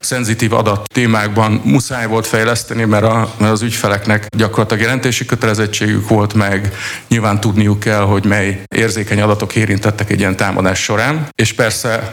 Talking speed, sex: 145 wpm, male